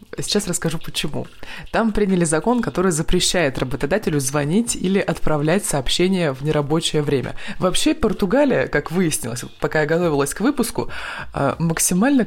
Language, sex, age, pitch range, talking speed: Russian, female, 20-39, 150-200 Hz, 125 wpm